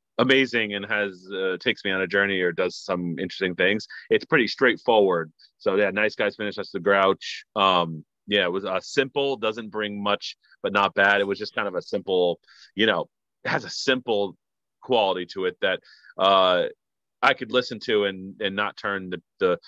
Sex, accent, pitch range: male, American, 90-120 Hz